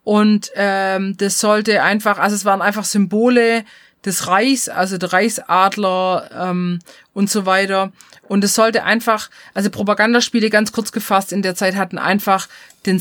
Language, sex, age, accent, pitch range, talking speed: German, female, 30-49, German, 200-240 Hz, 155 wpm